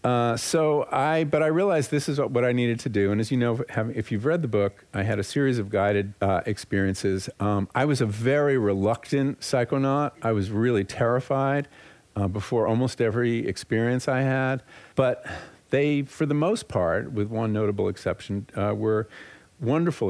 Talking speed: 190 wpm